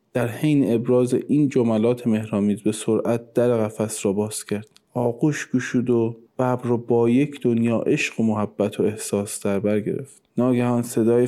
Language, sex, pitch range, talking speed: Persian, male, 110-145 Hz, 165 wpm